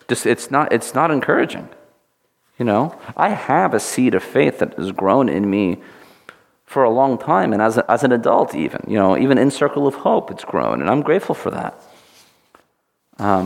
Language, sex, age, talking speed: English, male, 40-59, 200 wpm